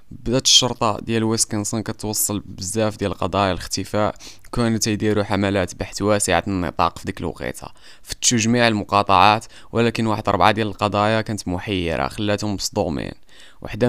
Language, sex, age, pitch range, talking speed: Arabic, male, 20-39, 95-110 Hz, 135 wpm